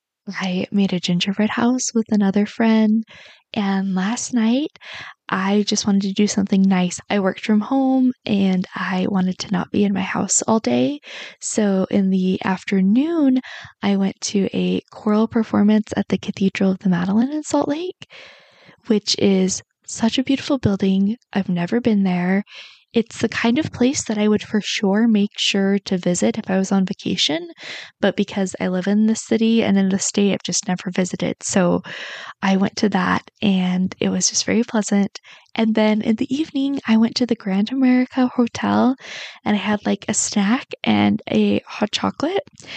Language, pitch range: English, 195-235 Hz